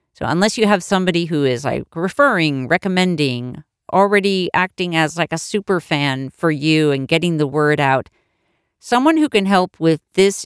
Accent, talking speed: American, 170 wpm